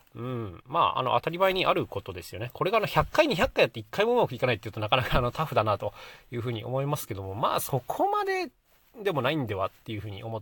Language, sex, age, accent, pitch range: Japanese, male, 30-49, native, 105-155 Hz